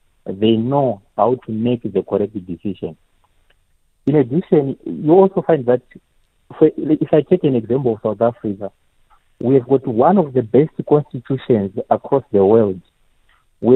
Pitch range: 110-135 Hz